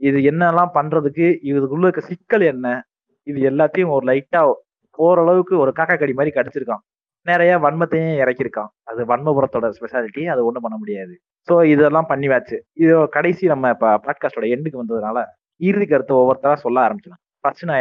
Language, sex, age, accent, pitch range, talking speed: Tamil, male, 20-39, native, 130-175 Hz, 140 wpm